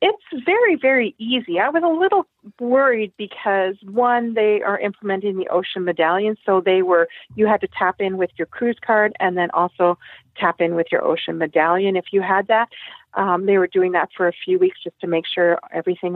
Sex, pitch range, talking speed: female, 185-240 Hz, 210 wpm